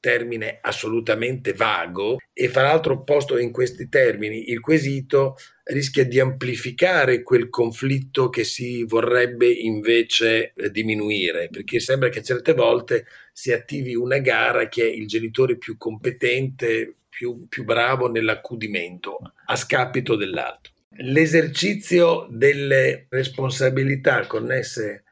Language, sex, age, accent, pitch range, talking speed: Italian, male, 40-59, native, 120-170 Hz, 115 wpm